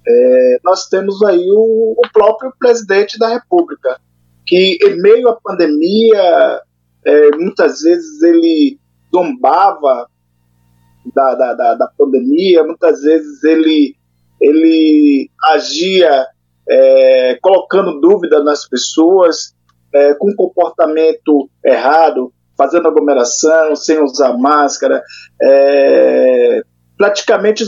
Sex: male